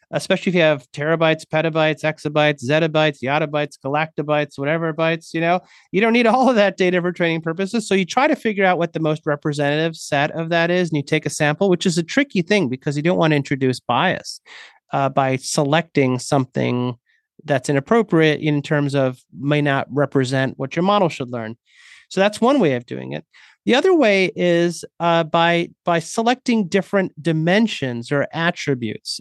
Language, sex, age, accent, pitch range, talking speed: English, male, 30-49, American, 145-195 Hz, 185 wpm